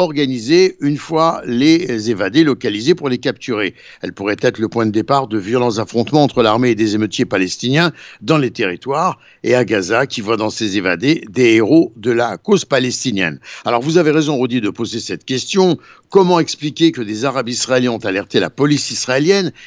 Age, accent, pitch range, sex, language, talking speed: 60-79, French, 115-160 Hz, male, Italian, 190 wpm